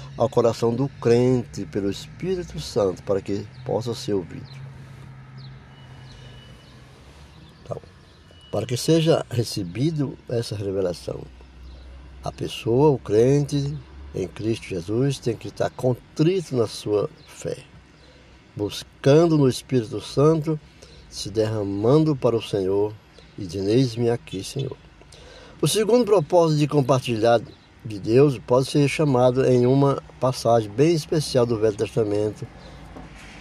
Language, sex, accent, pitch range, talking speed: Portuguese, male, Brazilian, 90-130 Hz, 115 wpm